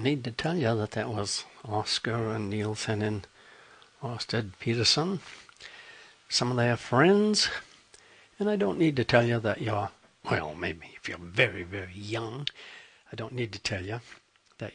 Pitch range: 115-180 Hz